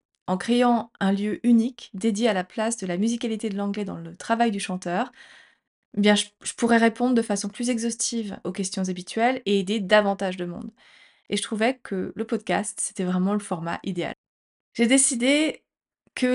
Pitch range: 200-240 Hz